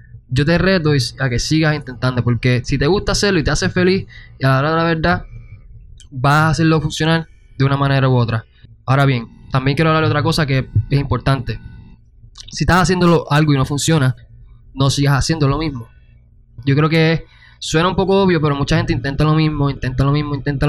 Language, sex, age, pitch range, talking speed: Spanish, male, 20-39, 125-150 Hz, 210 wpm